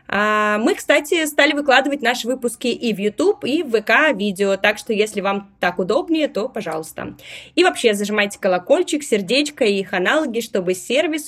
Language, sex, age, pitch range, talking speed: Russian, female, 20-39, 190-285 Hz, 160 wpm